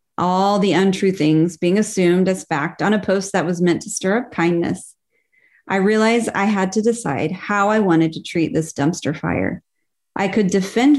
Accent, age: American, 30-49